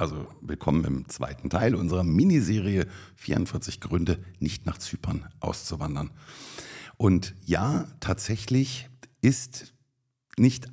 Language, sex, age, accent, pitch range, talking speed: German, male, 60-79, German, 85-120 Hz, 100 wpm